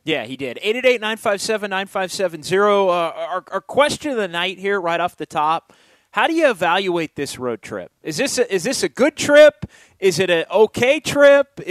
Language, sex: English, male